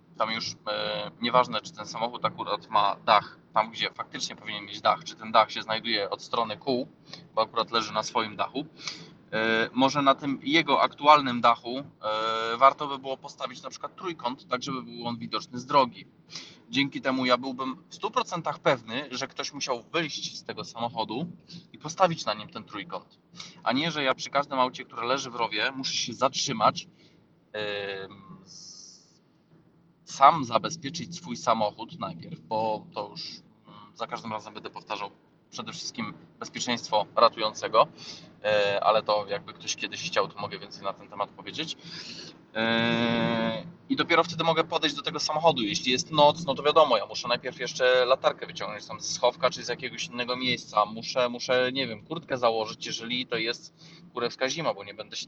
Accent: native